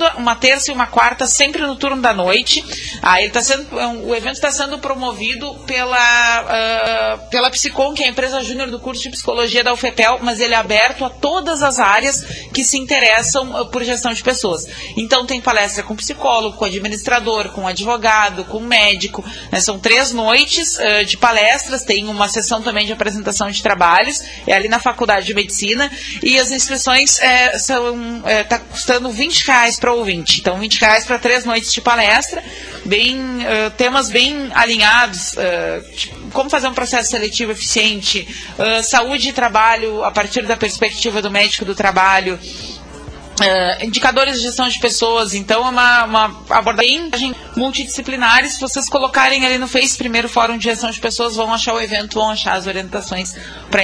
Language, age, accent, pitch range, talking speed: Portuguese, 30-49, Brazilian, 215-260 Hz, 175 wpm